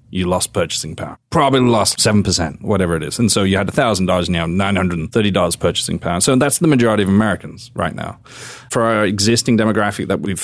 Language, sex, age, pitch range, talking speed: English, male, 30-49, 95-120 Hz, 190 wpm